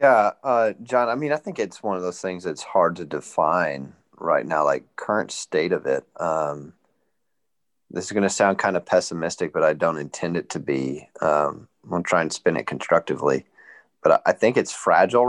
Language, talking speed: English, 210 wpm